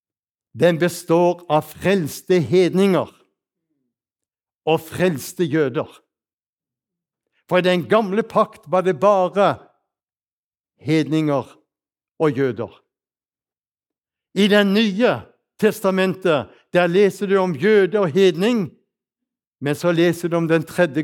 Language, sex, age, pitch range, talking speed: Danish, male, 60-79, 150-195 Hz, 105 wpm